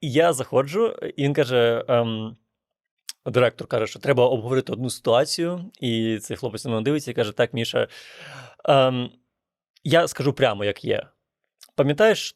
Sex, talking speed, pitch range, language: male, 140 wpm, 120-150 Hz, Ukrainian